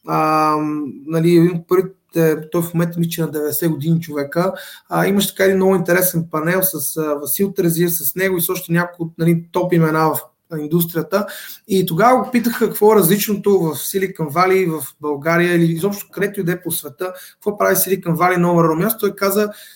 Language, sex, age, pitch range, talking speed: Bulgarian, male, 20-39, 160-190 Hz, 180 wpm